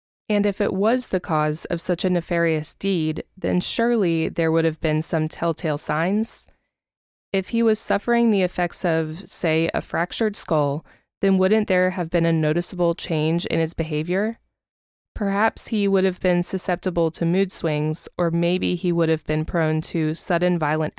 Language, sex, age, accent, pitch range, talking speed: English, female, 20-39, American, 160-195 Hz, 175 wpm